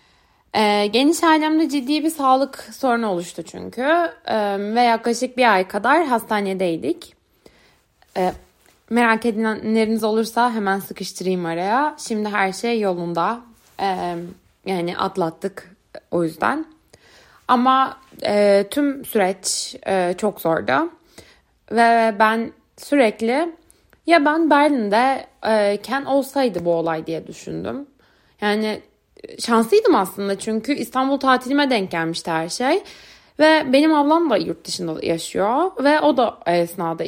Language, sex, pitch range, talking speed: Turkish, female, 185-275 Hz, 105 wpm